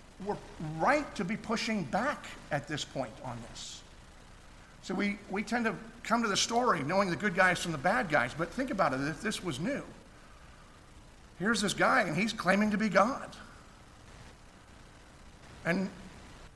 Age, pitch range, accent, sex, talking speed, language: 50-69, 140-205 Hz, American, male, 165 wpm, English